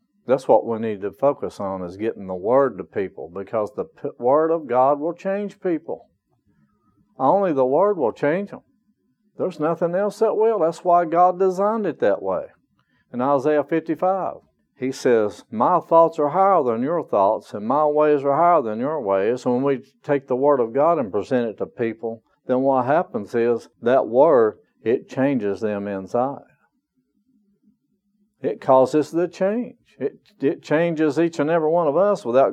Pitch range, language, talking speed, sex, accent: 125-185 Hz, English, 175 wpm, male, American